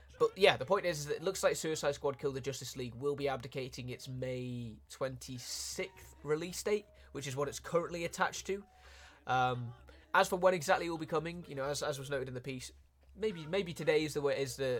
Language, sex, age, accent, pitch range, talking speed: Italian, male, 20-39, British, 125-160 Hz, 230 wpm